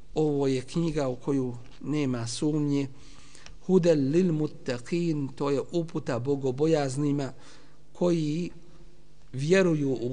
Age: 50-69